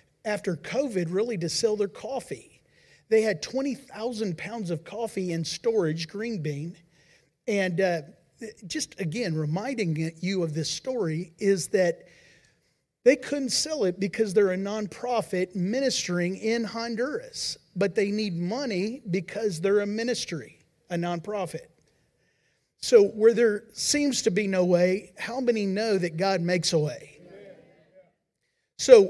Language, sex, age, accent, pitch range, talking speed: English, male, 40-59, American, 175-225 Hz, 135 wpm